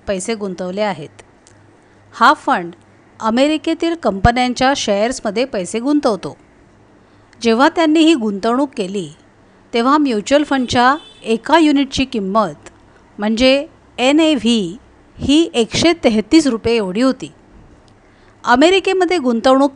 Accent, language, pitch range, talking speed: native, Marathi, 205-285 Hz, 90 wpm